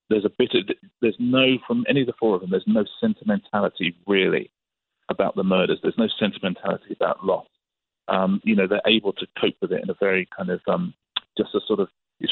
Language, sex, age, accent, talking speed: English, male, 40-59, British, 220 wpm